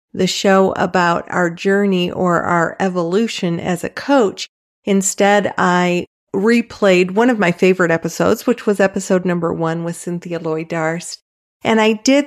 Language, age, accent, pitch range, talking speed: English, 40-59, American, 170-200 Hz, 150 wpm